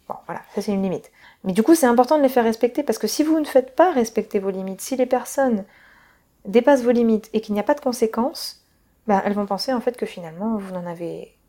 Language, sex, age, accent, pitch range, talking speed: French, female, 20-39, French, 195-245 Hz, 250 wpm